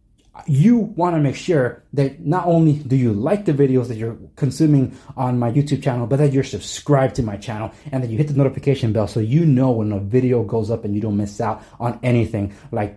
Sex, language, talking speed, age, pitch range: male, English, 230 wpm, 20-39, 120-155 Hz